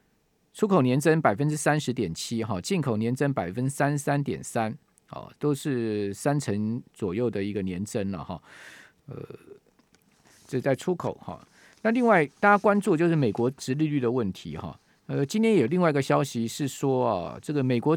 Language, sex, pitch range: Chinese, male, 115-150 Hz